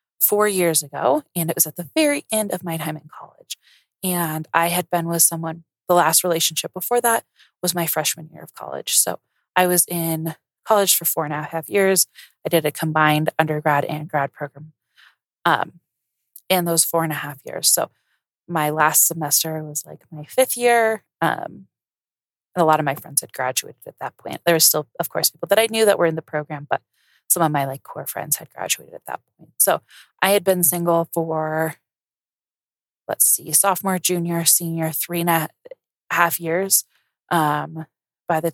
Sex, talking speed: female, 195 wpm